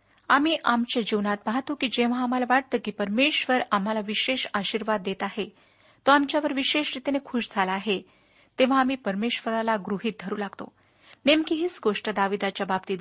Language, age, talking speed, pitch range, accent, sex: Marathi, 40-59, 150 wpm, 205-270 Hz, native, female